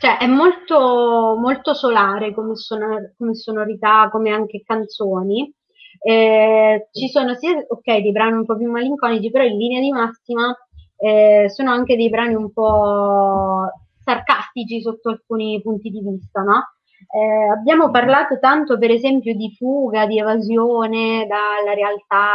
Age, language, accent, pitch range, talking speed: 20-39, Italian, native, 195-235 Hz, 145 wpm